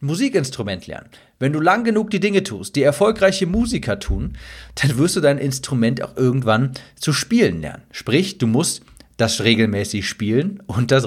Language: German